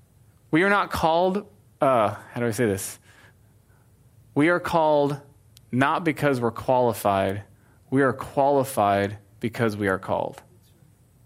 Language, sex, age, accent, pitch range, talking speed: English, male, 20-39, American, 115-145 Hz, 130 wpm